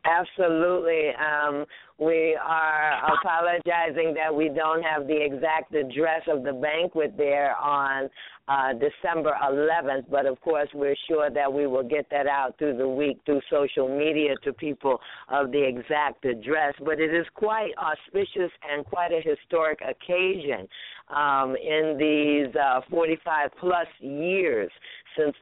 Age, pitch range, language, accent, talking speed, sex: 50-69, 135-160 Hz, English, American, 140 wpm, female